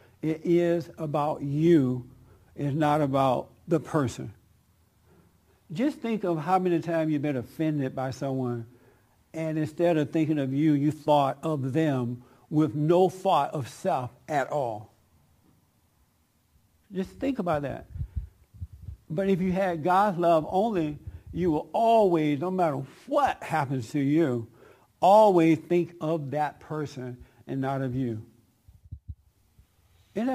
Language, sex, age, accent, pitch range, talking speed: English, male, 60-79, American, 125-170 Hz, 130 wpm